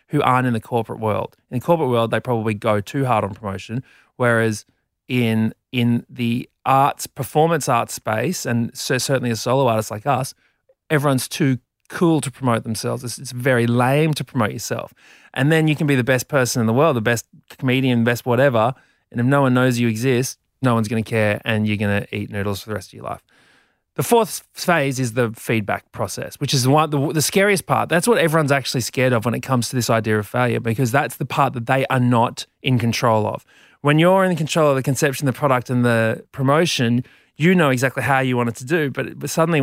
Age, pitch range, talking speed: 30-49, 115-140 Hz, 225 wpm